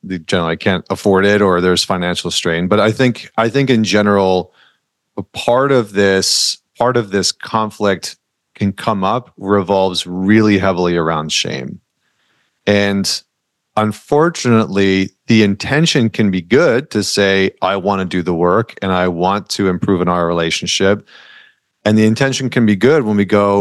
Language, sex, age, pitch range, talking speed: English, male, 40-59, 95-115 Hz, 165 wpm